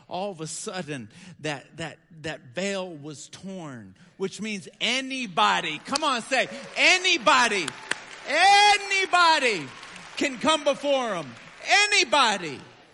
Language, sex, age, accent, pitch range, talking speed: English, male, 50-69, American, 175-255 Hz, 105 wpm